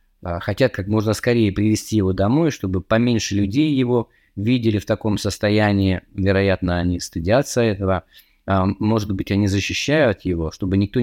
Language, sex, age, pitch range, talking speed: Russian, male, 20-39, 95-115 Hz, 140 wpm